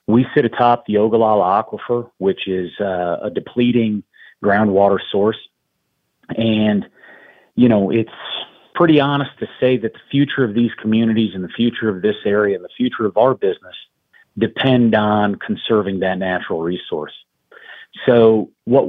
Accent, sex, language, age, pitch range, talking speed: American, male, English, 40-59, 100-125 Hz, 150 wpm